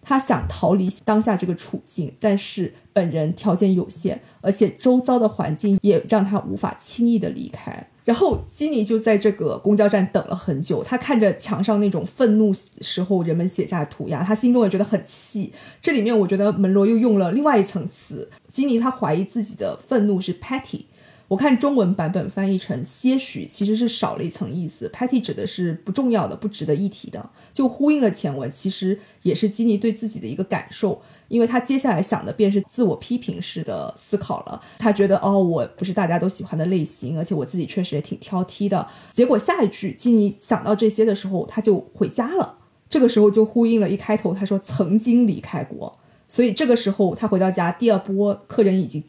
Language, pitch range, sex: Chinese, 190-225 Hz, female